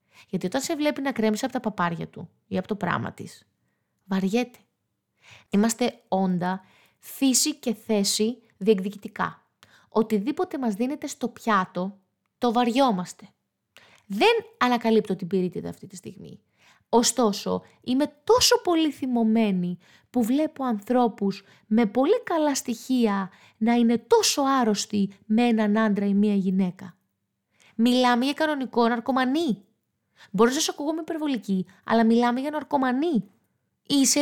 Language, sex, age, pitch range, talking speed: Greek, female, 20-39, 205-280 Hz, 125 wpm